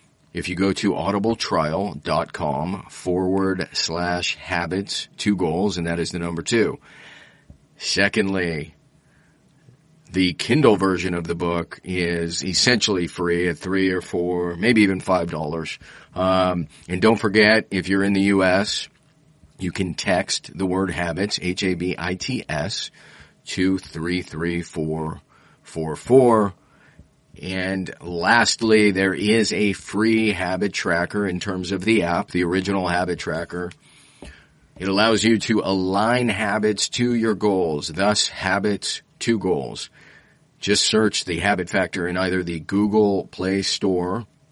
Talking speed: 135 wpm